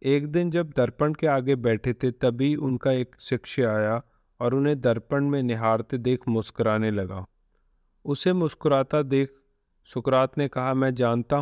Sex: male